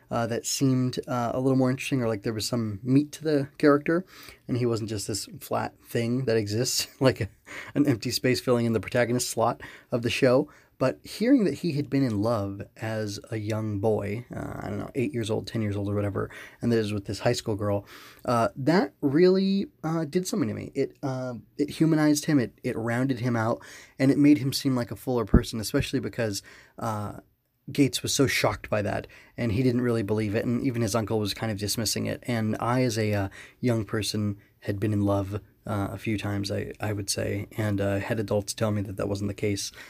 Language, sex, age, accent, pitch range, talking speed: English, male, 20-39, American, 105-135 Hz, 230 wpm